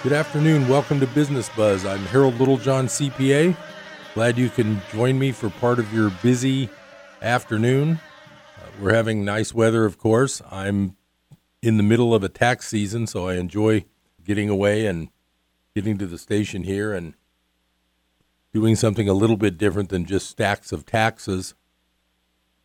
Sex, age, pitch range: male, 50-69, 90-115 Hz